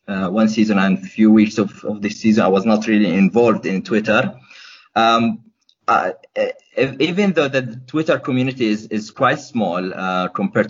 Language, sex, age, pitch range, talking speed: English, male, 30-49, 100-115 Hz, 180 wpm